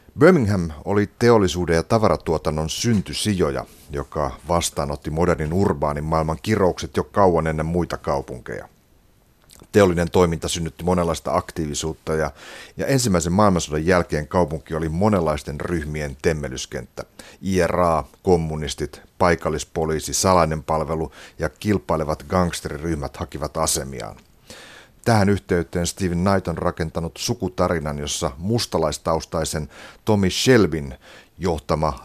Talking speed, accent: 100 wpm, native